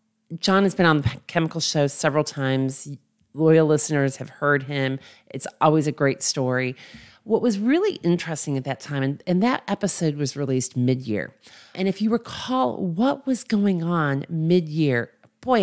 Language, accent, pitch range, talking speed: English, American, 130-175 Hz, 165 wpm